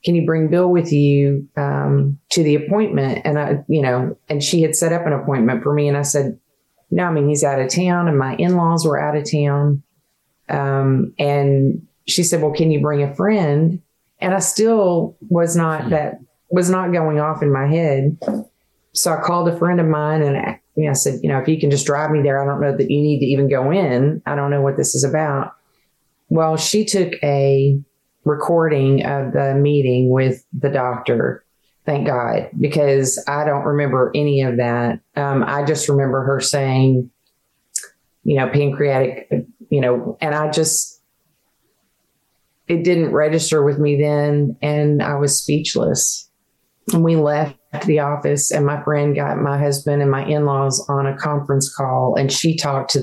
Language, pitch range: English, 135-155 Hz